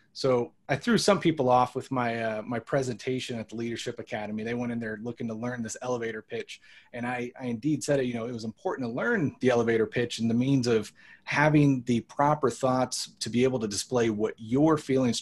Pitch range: 115-140 Hz